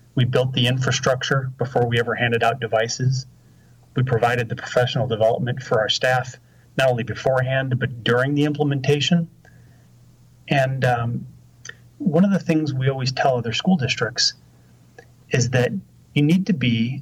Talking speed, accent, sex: 150 wpm, American, male